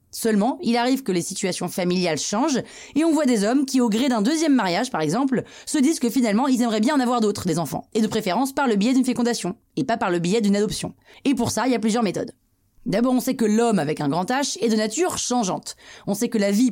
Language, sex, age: French, female, 20-39